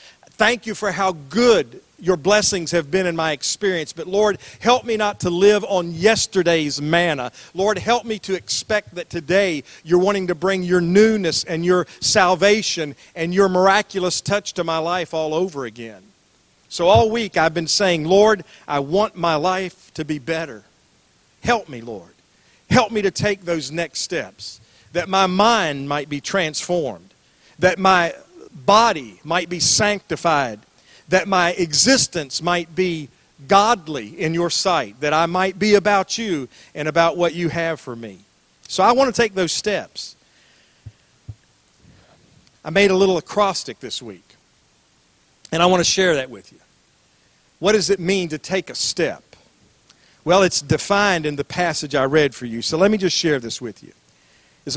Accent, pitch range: American, 155-200 Hz